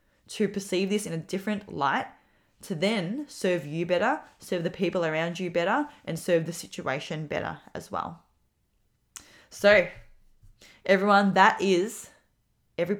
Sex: female